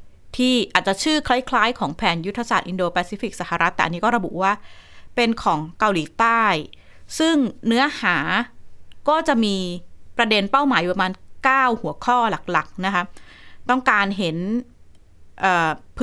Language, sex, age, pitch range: Thai, female, 20-39, 180-245 Hz